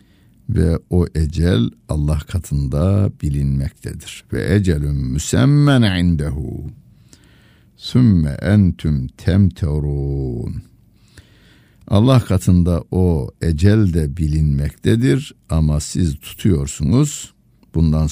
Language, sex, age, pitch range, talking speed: Turkish, male, 60-79, 75-110 Hz, 75 wpm